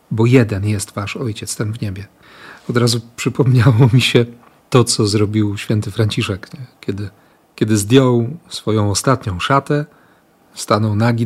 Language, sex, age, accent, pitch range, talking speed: Polish, male, 40-59, native, 110-135 Hz, 140 wpm